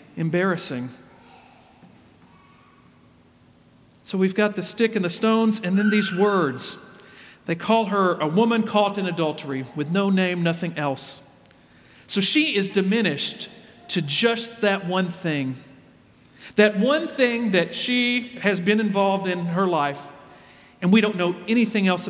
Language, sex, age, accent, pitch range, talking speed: English, male, 50-69, American, 160-215 Hz, 140 wpm